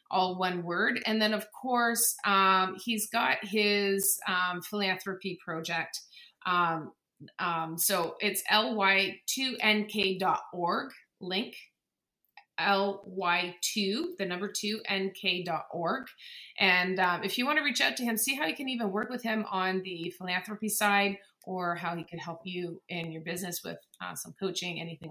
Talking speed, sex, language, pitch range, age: 145 wpm, female, English, 180-230 Hz, 30-49